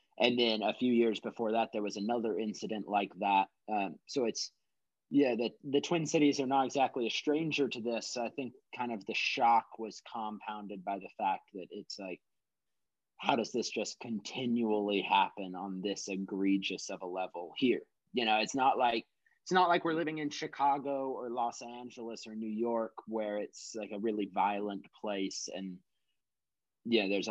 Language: English